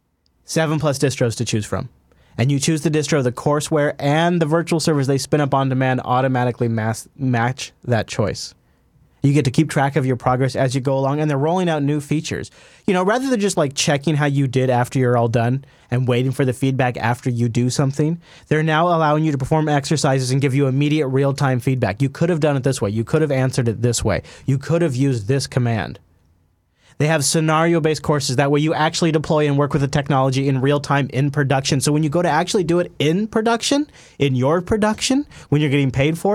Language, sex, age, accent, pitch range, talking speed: English, male, 30-49, American, 125-155 Hz, 225 wpm